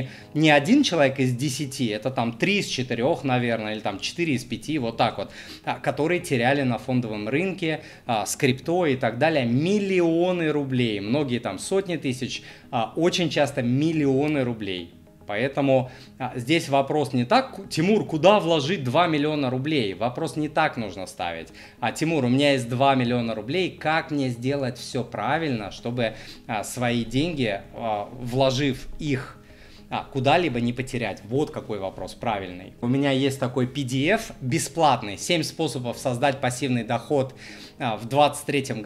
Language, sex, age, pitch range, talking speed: Russian, male, 20-39, 120-155 Hz, 145 wpm